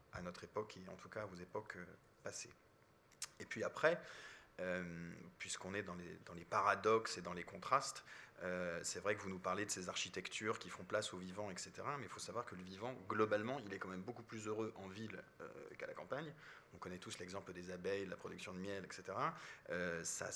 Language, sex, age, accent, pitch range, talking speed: French, male, 30-49, French, 90-105 Hz, 220 wpm